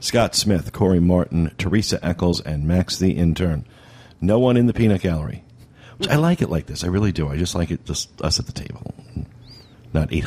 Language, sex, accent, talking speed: English, male, American, 210 wpm